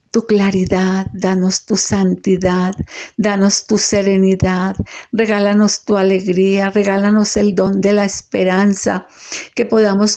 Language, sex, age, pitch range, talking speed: Spanish, female, 50-69, 190-225 Hz, 110 wpm